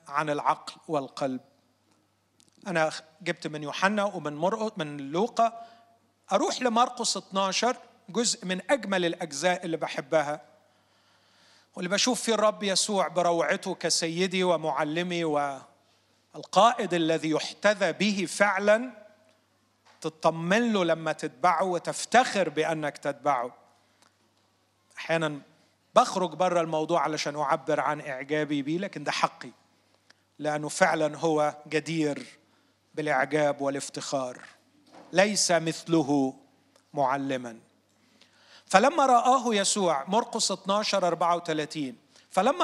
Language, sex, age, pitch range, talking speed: Arabic, male, 40-59, 145-195 Hz, 95 wpm